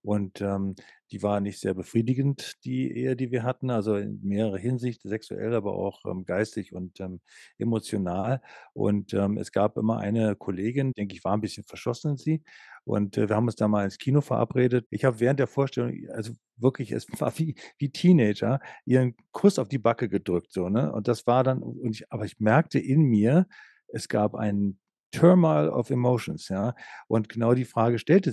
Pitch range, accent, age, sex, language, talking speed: 105-130 Hz, German, 50-69, male, German, 195 wpm